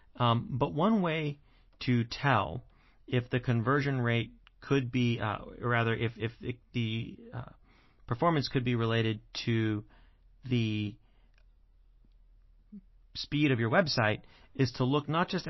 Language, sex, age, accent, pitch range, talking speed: English, male, 40-59, American, 110-130 Hz, 130 wpm